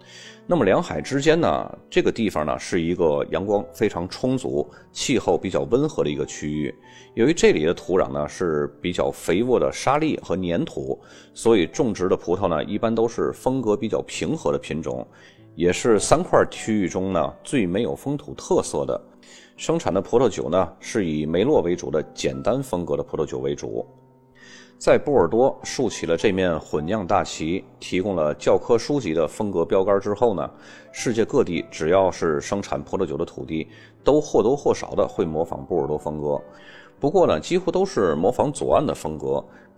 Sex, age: male, 30-49